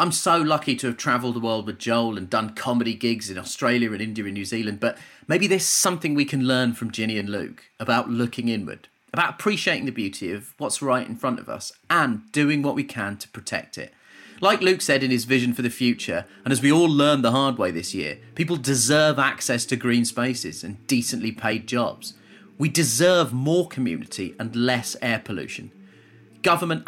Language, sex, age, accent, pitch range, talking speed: English, male, 30-49, British, 115-165 Hz, 205 wpm